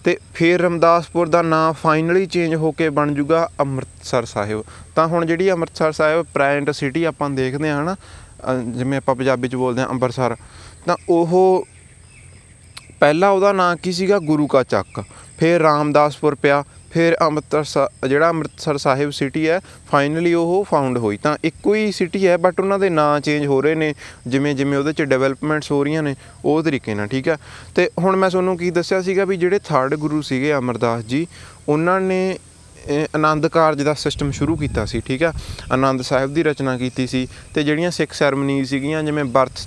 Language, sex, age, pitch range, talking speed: Punjabi, male, 20-39, 130-165 Hz, 180 wpm